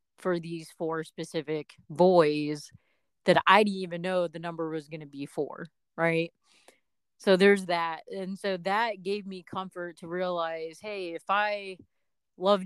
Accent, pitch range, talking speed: American, 160-190 Hz, 155 wpm